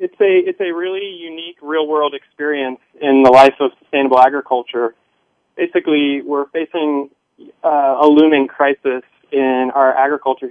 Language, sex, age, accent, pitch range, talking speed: English, male, 20-39, American, 125-140 Hz, 145 wpm